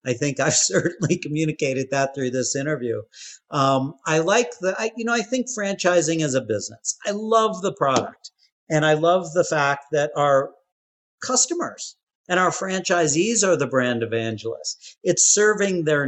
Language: English